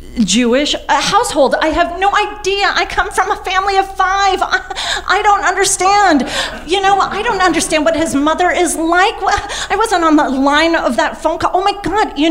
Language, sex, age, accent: English, female, 30-49, American